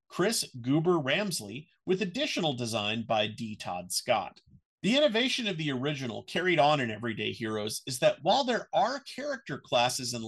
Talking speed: 160 wpm